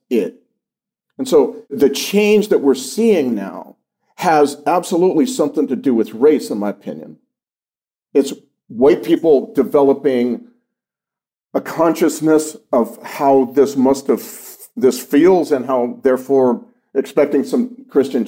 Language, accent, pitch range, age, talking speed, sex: English, American, 135-195 Hz, 50-69, 125 wpm, male